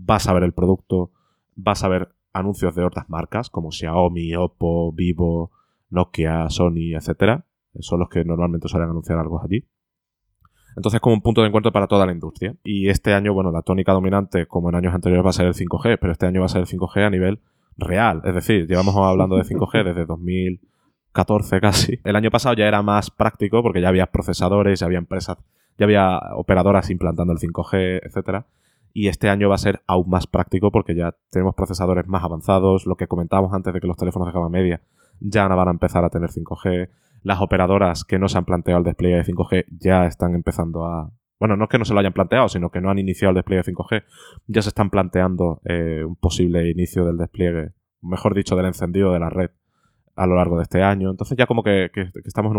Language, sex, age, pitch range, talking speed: Spanish, male, 20-39, 85-100 Hz, 215 wpm